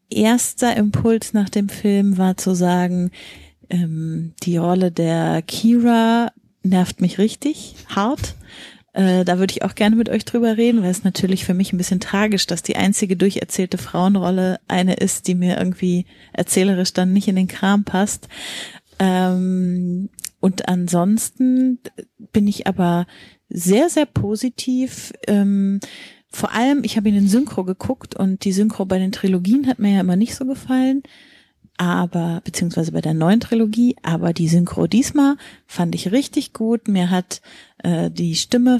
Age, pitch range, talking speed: 30-49, 175-215 Hz, 160 wpm